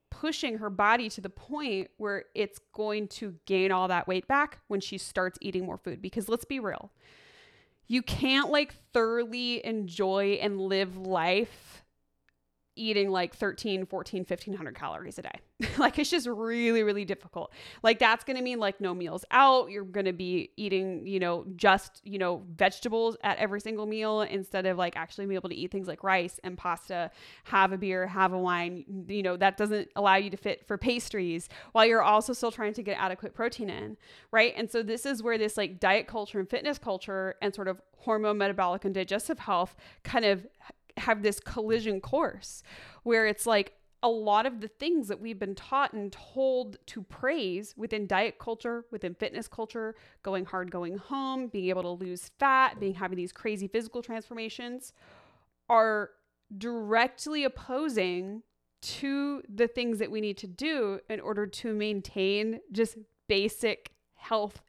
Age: 20-39